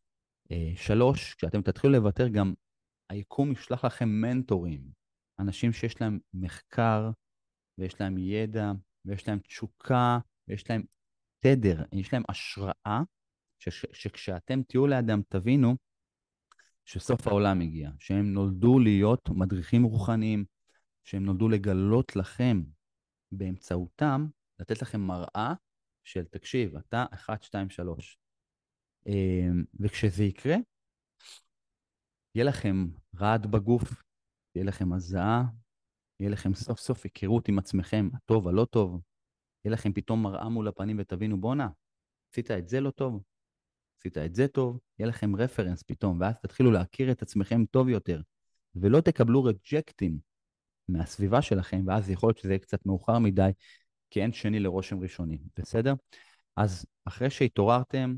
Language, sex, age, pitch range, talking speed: Hebrew, male, 30-49, 95-120 Hz, 125 wpm